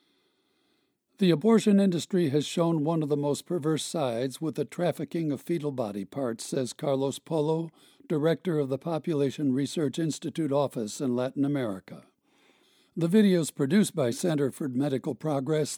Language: English